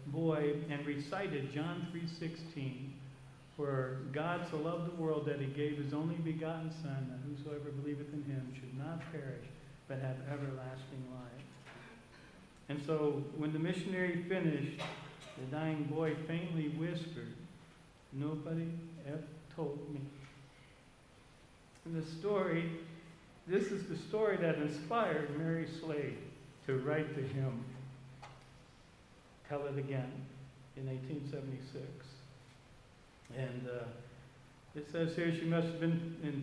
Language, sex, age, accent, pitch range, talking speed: English, male, 50-69, American, 135-165 Hz, 125 wpm